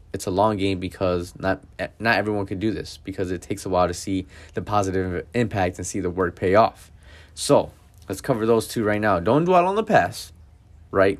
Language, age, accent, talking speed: English, 20-39, American, 215 wpm